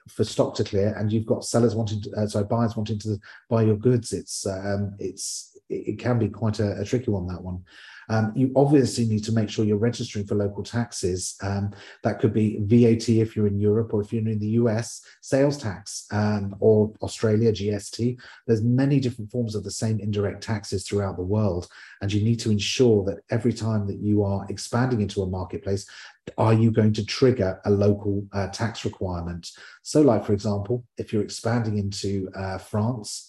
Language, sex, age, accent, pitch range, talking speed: English, male, 40-59, British, 100-115 Hz, 200 wpm